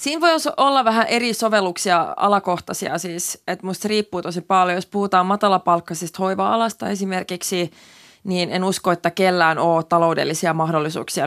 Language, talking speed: Finnish, 145 wpm